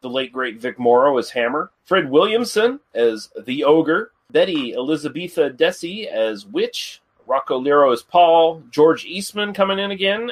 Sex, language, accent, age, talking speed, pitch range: male, English, American, 30-49, 150 wpm, 120-175 Hz